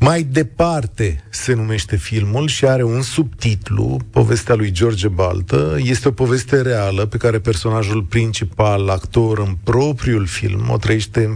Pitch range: 100-120 Hz